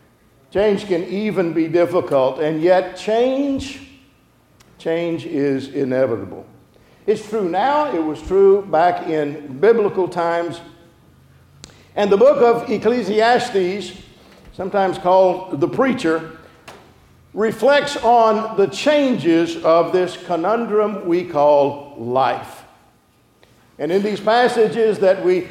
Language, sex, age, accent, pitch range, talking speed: English, male, 50-69, American, 165-225 Hz, 110 wpm